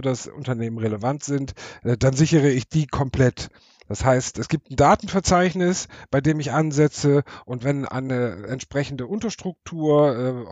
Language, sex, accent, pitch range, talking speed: German, male, German, 125-155 Hz, 145 wpm